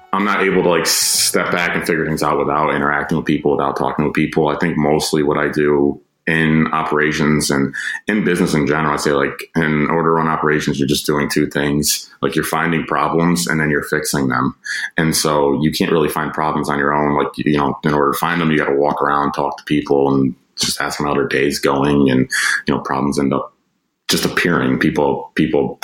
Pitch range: 70-80 Hz